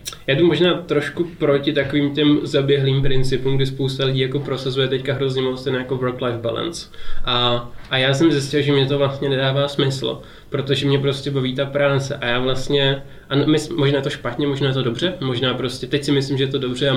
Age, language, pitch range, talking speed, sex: 20-39, Czech, 130-140 Hz, 215 wpm, male